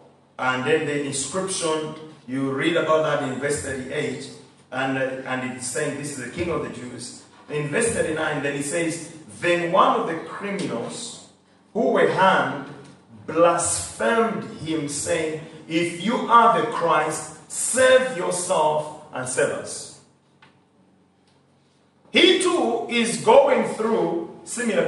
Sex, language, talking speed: male, English, 135 wpm